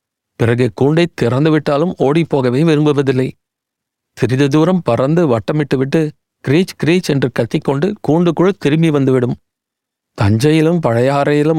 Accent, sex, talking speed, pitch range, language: native, male, 100 wpm, 125-150 Hz, Tamil